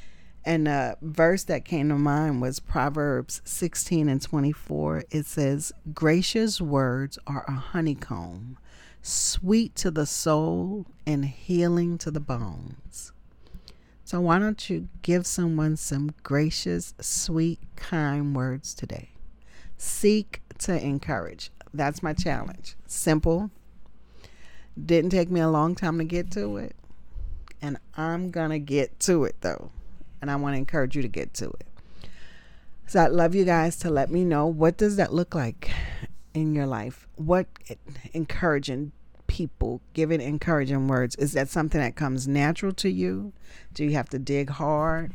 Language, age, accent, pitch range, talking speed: English, 40-59, American, 135-170 Hz, 150 wpm